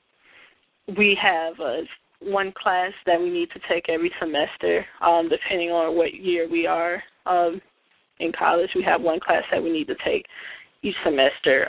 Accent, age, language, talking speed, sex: American, 20-39, English, 175 wpm, female